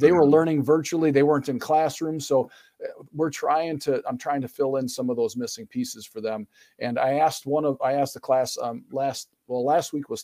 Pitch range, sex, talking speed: 130-155 Hz, male, 230 wpm